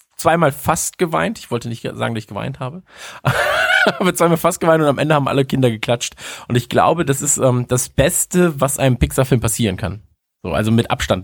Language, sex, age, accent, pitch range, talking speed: German, male, 20-39, German, 110-150 Hz, 210 wpm